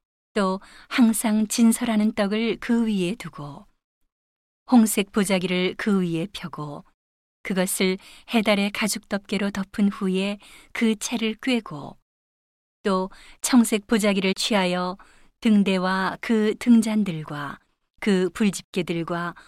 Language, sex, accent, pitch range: Korean, female, native, 185-225 Hz